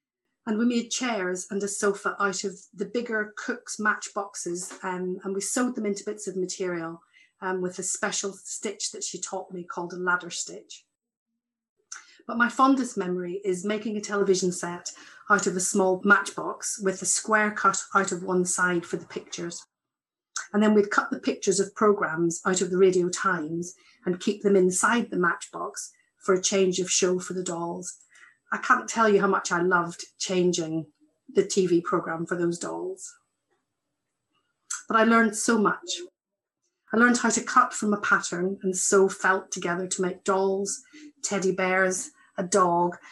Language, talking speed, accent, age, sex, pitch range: English, 175 wpm, British, 40-59, female, 185-220 Hz